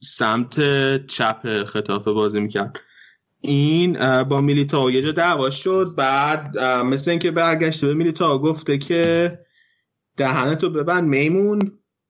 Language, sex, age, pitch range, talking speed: Persian, male, 20-39, 120-145 Hz, 125 wpm